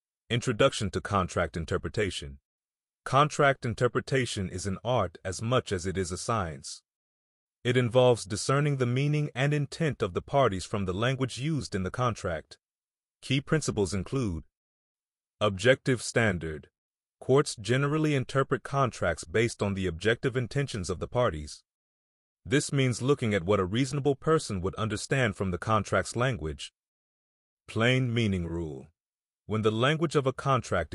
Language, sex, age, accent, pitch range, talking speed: English, male, 30-49, American, 95-130 Hz, 140 wpm